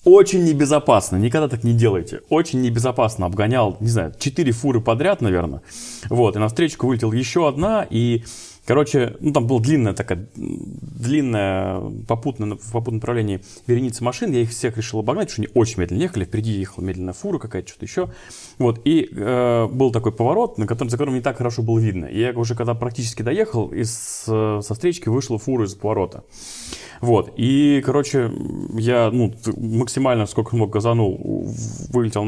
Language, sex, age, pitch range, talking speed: Russian, male, 30-49, 105-125 Hz, 170 wpm